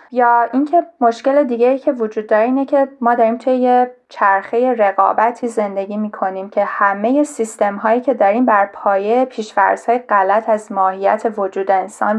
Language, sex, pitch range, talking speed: Persian, female, 205-245 Hz, 165 wpm